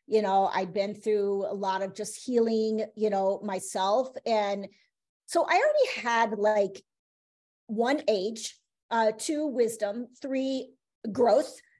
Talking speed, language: 130 wpm, English